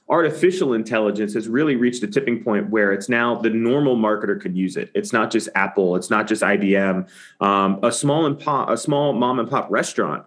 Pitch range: 105-125 Hz